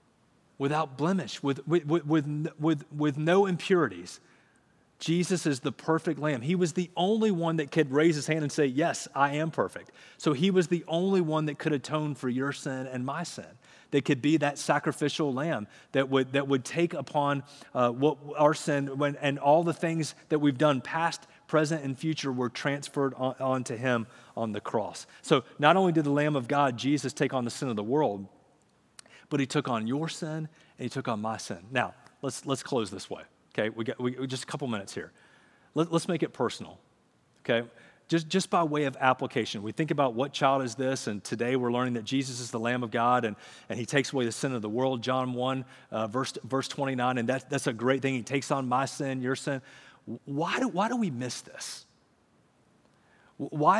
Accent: American